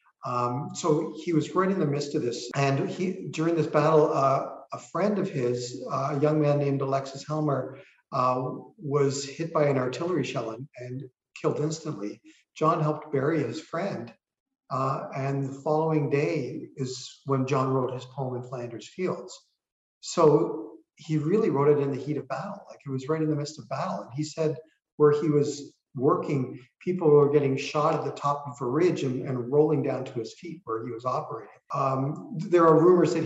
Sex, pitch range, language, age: male, 130-160 Hz, English, 50-69